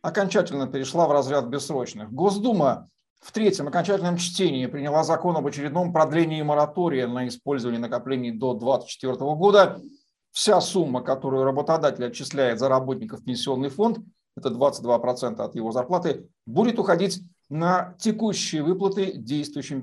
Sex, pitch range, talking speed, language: male, 130-180 Hz, 125 wpm, Russian